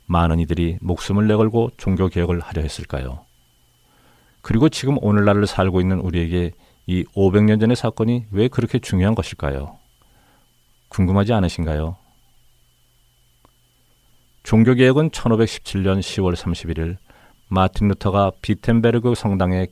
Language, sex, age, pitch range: Korean, male, 40-59, 85-105 Hz